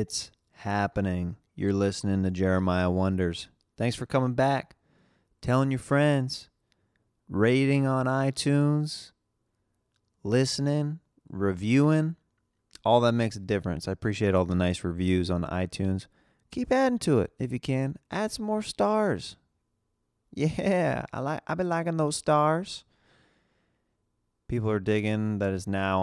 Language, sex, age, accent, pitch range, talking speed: English, male, 30-49, American, 100-135 Hz, 130 wpm